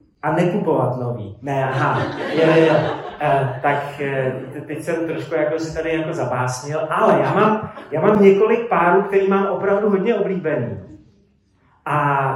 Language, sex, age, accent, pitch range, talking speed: Czech, male, 30-49, native, 140-180 Hz, 125 wpm